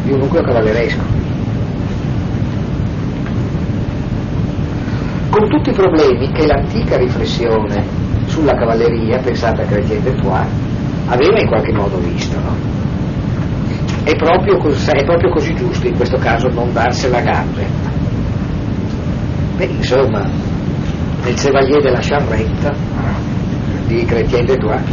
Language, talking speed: Italian, 110 wpm